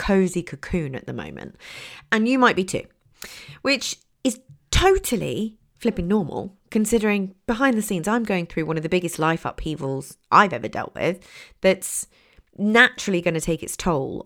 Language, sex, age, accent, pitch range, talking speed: English, female, 30-49, British, 150-210 Hz, 165 wpm